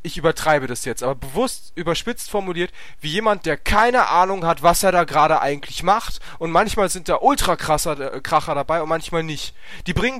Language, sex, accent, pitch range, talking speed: German, male, German, 155-215 Hz, 200 wpm